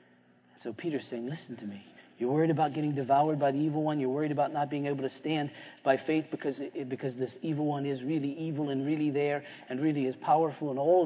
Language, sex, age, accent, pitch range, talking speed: English, male, 40-59, American, 110-145 Hz, 230 wpm